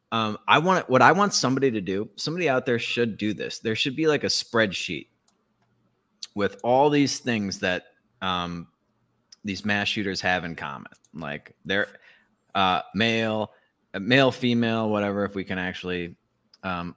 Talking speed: 160 wpm